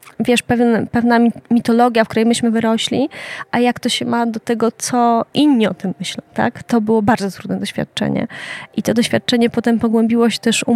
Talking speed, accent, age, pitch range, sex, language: 185 wpm, native, 20-39, 210-240 Hz, female, Polish